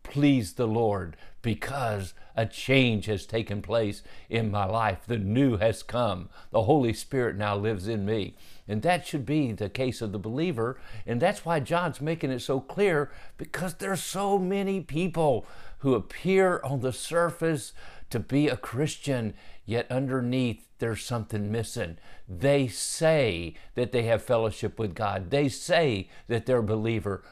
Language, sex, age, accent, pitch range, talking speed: English, male, 50-69, American, 110-150 Hz, 160 wpm